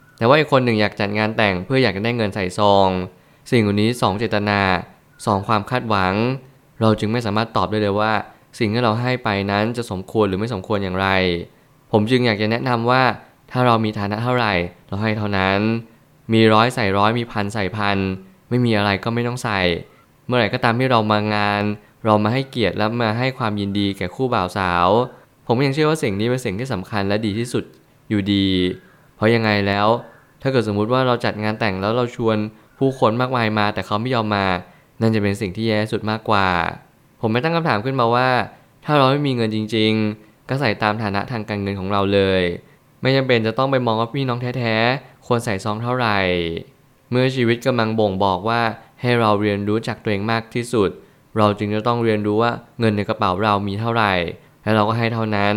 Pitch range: 105-120 Hz